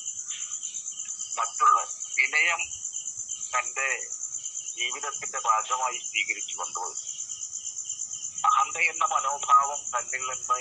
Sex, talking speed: male, 60 wpm